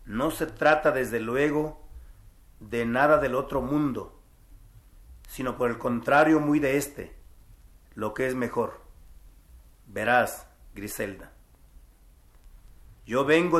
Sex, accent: male, Mexican